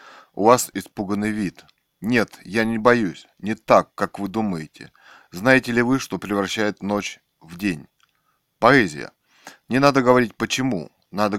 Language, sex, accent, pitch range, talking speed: Russian, male, native, 105-125 Hz, 140 wpm